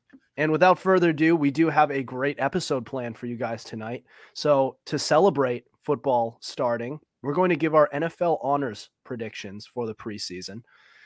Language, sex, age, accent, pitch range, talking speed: English, male, 30-49, American, 135-185 Hz, 170 wpm